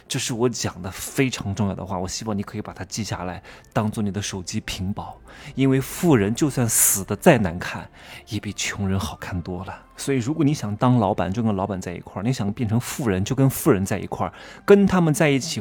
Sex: male